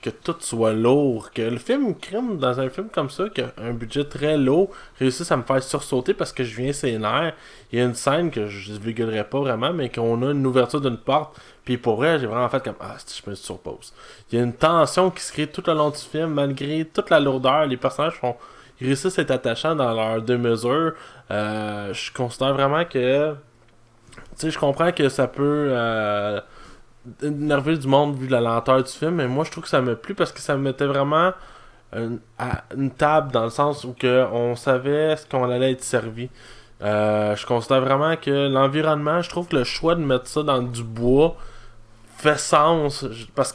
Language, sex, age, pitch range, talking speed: French, male, 20-39, 120-150 Hz, 215 wpm